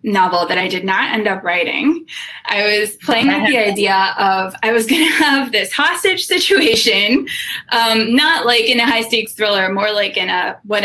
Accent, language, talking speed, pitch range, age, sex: American, English, 200 wpm, 195-270 Hz, 20-39, female